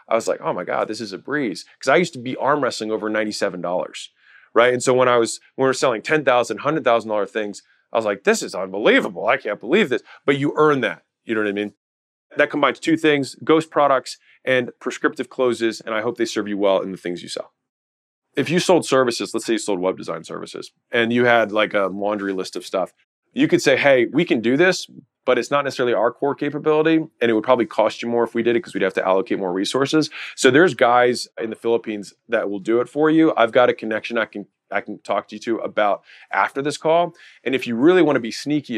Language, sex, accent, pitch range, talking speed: English, male, American, 105-145 Hz, 250 wpm